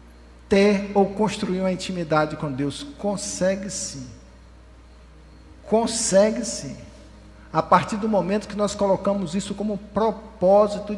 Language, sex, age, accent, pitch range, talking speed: Portuguese, male, 60-79, Brazilian, 175-260 Hz, 115 wpm